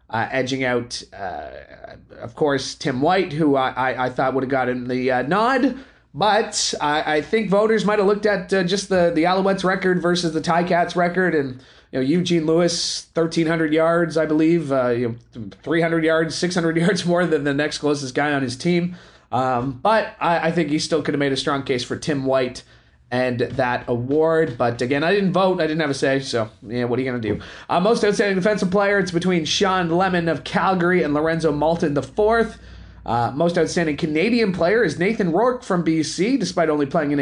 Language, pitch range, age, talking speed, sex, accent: English, 140-185 Hz, 30-49, 210 wpm, male, American